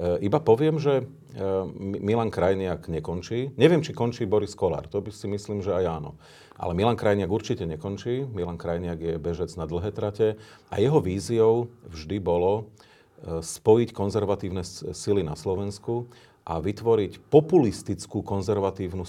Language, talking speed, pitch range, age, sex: Slovak, 140 wpm, 90-115 Hz, 40-59, male